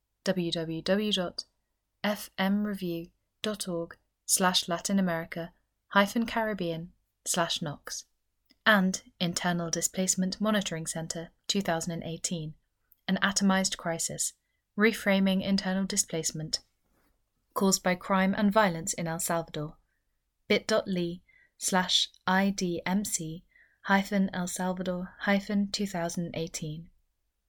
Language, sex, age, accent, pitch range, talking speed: English, female, 30-49, British, 170-200 Hz, 75 wpm